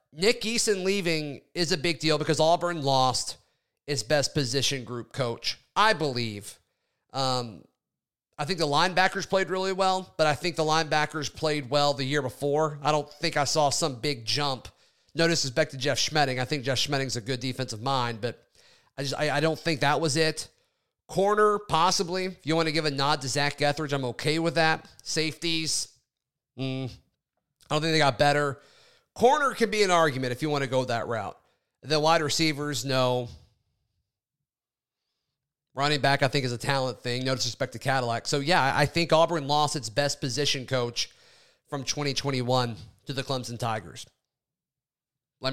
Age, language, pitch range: 30-49, English, 125-155 Hz